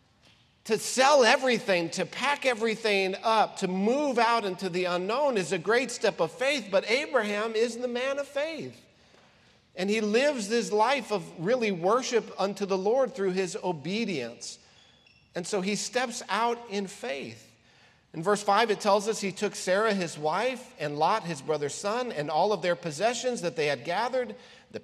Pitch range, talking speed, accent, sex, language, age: 165-225 Hz, 175 wpm, American, male, English, 50-69